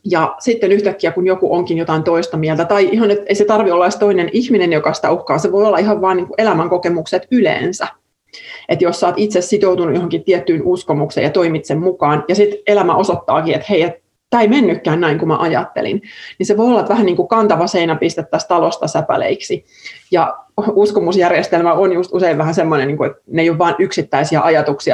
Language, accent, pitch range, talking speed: Finnish, native, 160-205 Hz, 195 wpm